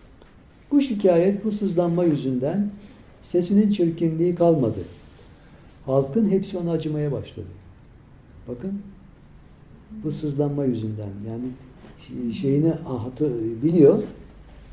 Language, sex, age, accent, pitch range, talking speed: Turkish, male, 60-79, native, 115-190 Hz, 85 wpm